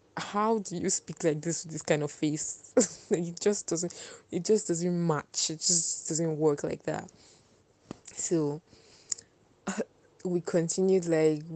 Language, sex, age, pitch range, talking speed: English, female, 20-39, 155-180 Hz, 155 wpm